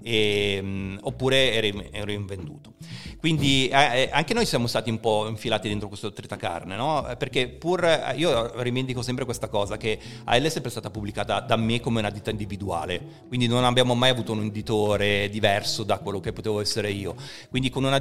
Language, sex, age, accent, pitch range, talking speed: Italian, male, 40-59, native, 105-125 Hz, 175 wpm